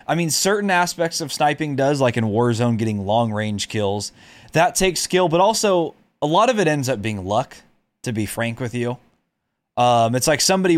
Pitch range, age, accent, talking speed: 110-150 Hz, 20-39, American, 195 wpm